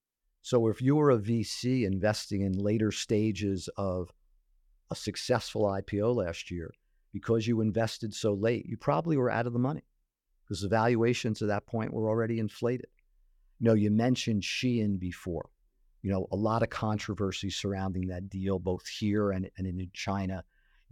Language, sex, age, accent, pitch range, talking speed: English, male, 50-69, American, 95-115 Hz, 170 wpm